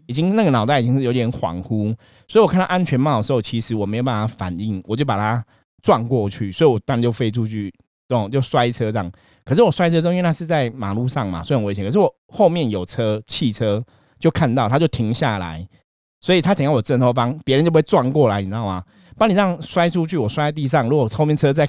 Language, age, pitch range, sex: Chinese, 20-39, 105-145 Hz, male